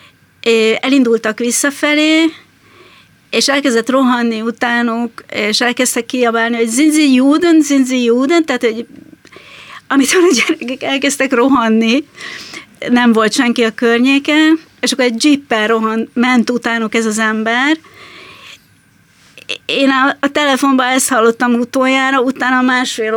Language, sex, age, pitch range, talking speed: Hungarian, female, 30-49, 230-270 Hz, 110 wpm